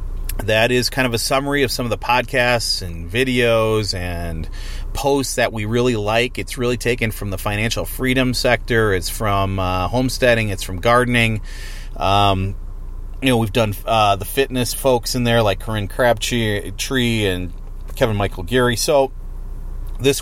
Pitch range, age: 100-120 Hz, 30-49